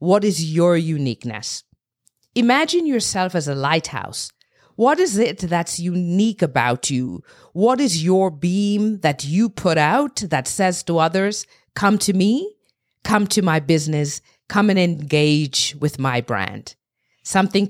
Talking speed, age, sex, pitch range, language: 140 wpm, 50-69, female, 150-215 Hz, English